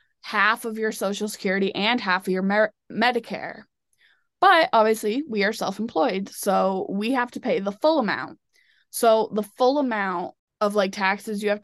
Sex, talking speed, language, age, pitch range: female, 165 wpm, English, 20-39, 195-220 Hz